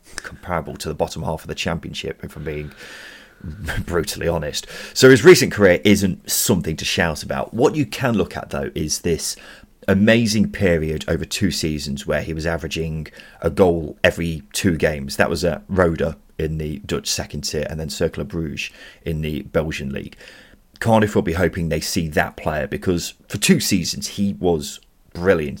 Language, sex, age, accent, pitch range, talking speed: English, male, 30-49, British, 75-100 Hz, 180 wpm